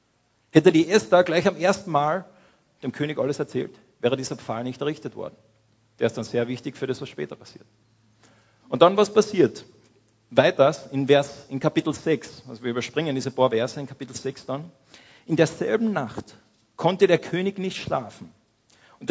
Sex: male